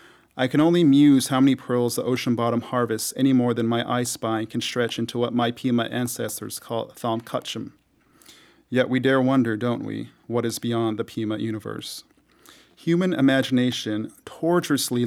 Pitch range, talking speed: 115-130 Hz, 165 wpm